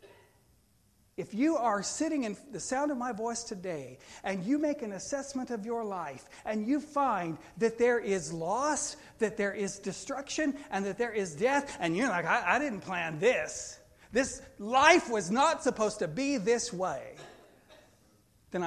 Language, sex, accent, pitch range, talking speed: English, male, American, 170-220 Hz, 170 wpm